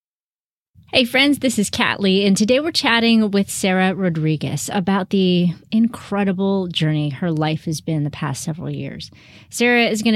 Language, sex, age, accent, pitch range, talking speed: English, female, 30-49, American, 160-205 Hz, 165 wpm